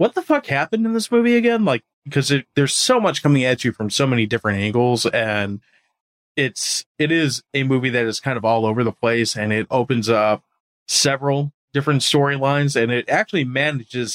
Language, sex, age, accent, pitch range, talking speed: English, male, 20-39, American, 110-135 Hz, 195 wpm